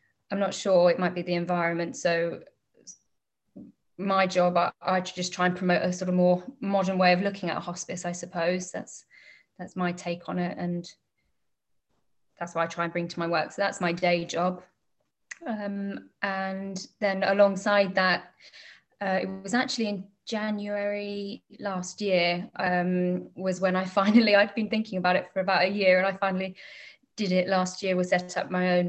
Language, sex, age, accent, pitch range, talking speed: English, female, 20-39, British, 175-195 Hz, 185 wpm